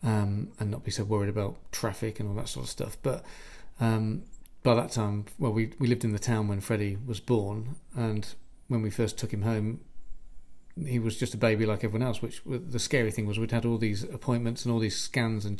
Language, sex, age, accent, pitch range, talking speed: English, male, 40-59, British, 110-120 Hz, 230 wpm